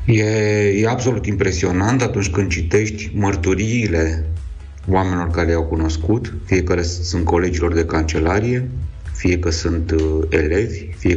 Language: Romanian